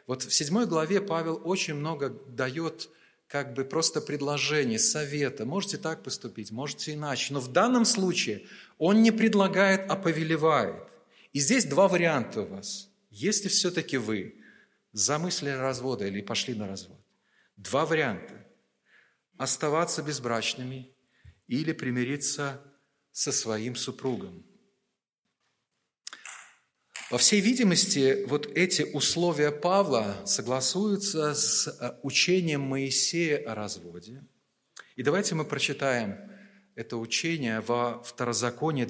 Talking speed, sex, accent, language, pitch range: 110 wpm, male, native, Russian, 120-170 Hz